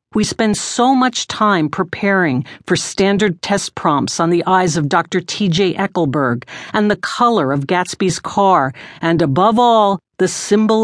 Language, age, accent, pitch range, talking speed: English, 50-69, American, 165-215 Hz, 155 wpm